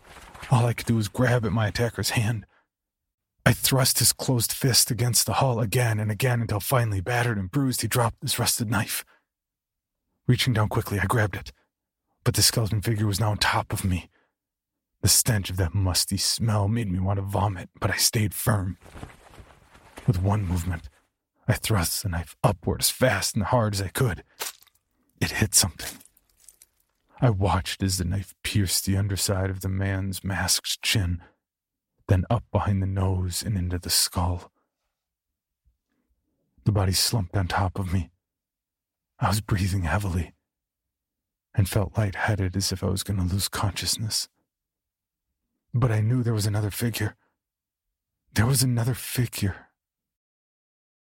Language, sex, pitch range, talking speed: English, male, 90-115 Hz, 160 wpm